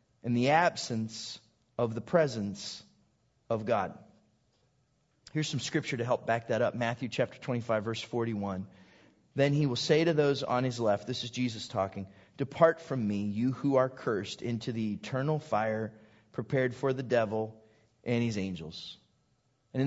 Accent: American